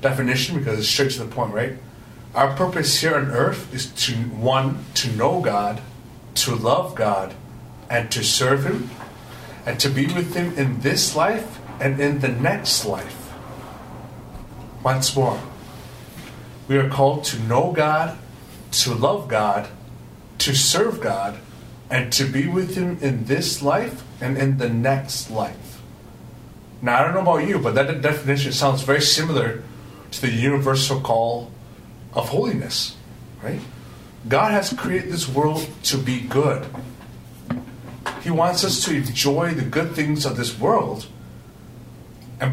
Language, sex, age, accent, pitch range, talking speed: English, male, 30-49, American, 120-155 Hz, 150 wpm